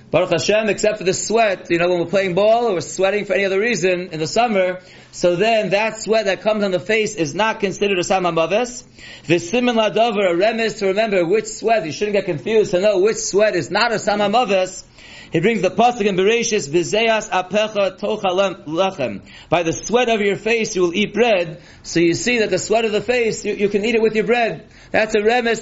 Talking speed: 225 wpm